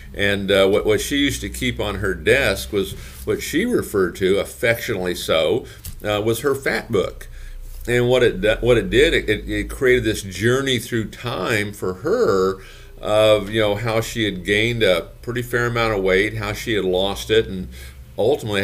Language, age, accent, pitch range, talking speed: English, 50-69, American, 90-115 Hz, 185 wpm